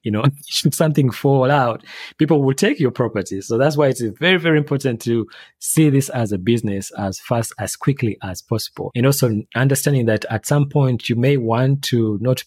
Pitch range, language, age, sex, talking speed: 110-140 Hz, English, 30-49, male, 200 wpm